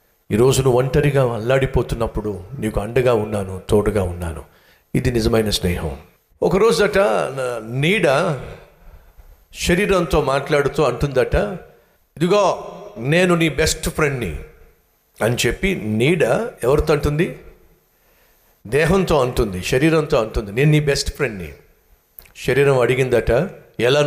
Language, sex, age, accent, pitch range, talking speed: Telugu, male, 50-69, native, 115-175 Hz, 100 wpm